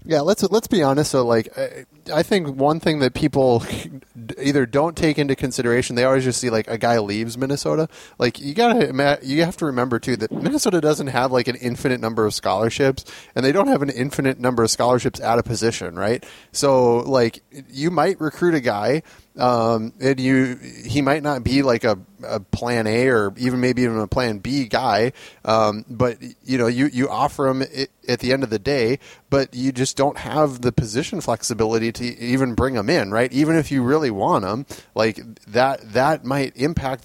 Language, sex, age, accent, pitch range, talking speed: English, male, 30-49, American, 115-140 Hz, 200 wpm